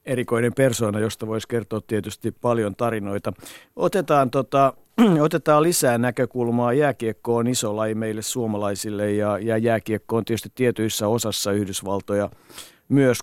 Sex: male